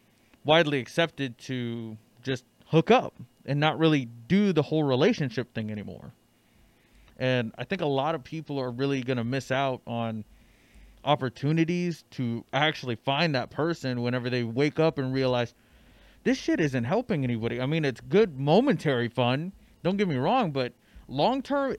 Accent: American